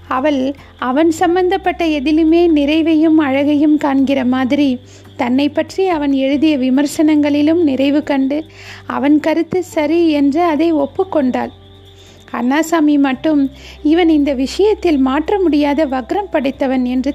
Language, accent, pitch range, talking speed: Tamil, native, 270-320 Hz, 110 wpm